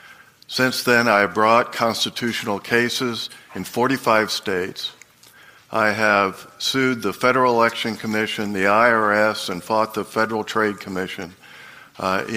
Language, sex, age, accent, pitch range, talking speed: English, male, 50-69, American, 100-115 Hz, 125 wpm